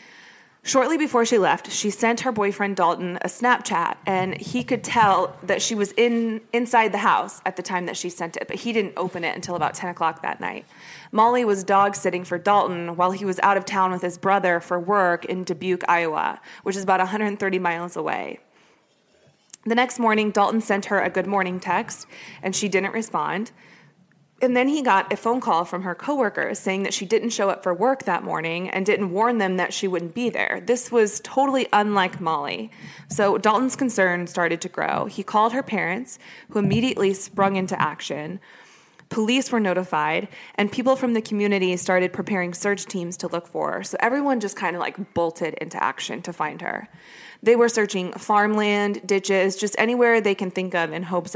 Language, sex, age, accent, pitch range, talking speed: English, female, 20-39, American, 180-220 Hz, 195 wpm